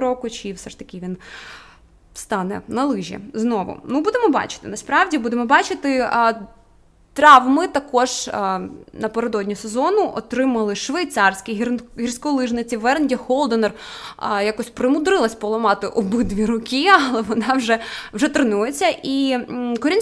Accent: native